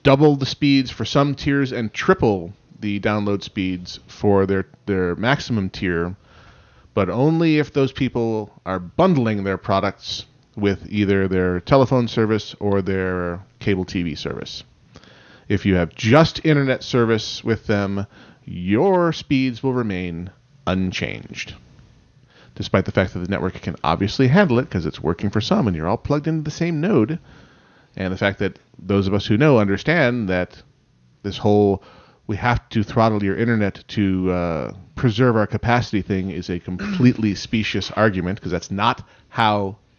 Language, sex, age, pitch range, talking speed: English, male, 30-49, 100-140 Hz, 160 wpm